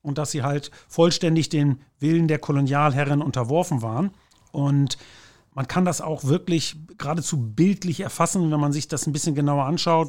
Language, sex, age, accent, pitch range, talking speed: German, male, 40-59, German, 140-170 Hz, 165 wpm